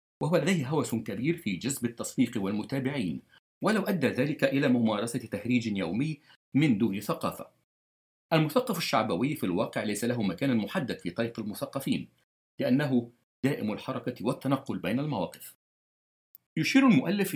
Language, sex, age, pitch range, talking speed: Arabic, male, 50-69, 110-150 Hz, 130 wpm